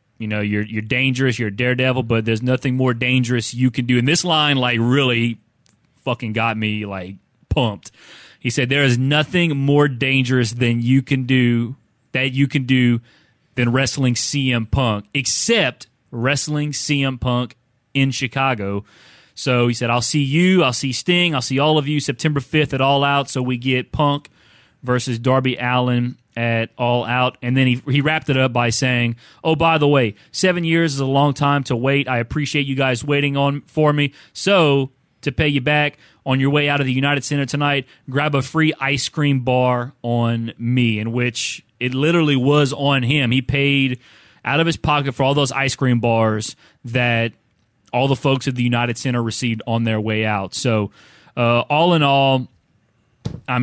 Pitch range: 120-140 Hz